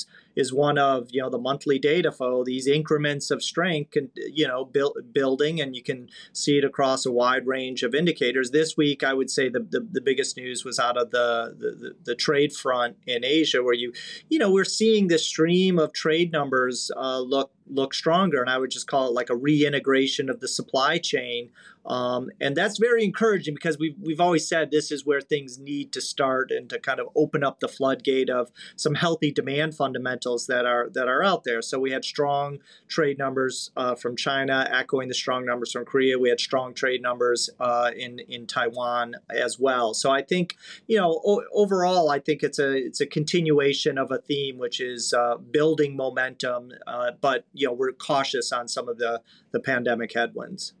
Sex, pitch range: male, 125-155 Hz